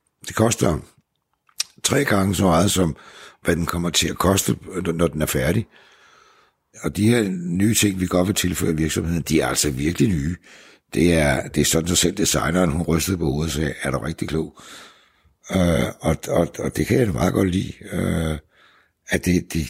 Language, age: Danish, 60-79